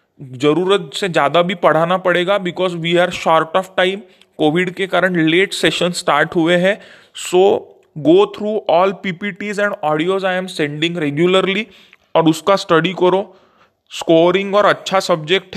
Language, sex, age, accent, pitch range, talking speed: English, male, 20-39, Indian, 165-190 Hz, 150 wpm